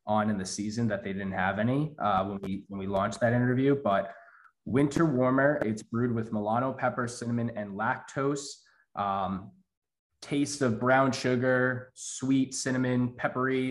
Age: 20-39